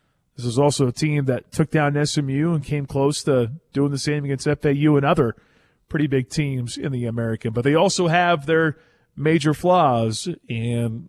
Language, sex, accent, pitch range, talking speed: English, male, American, 125-155 Hz, 185 wpm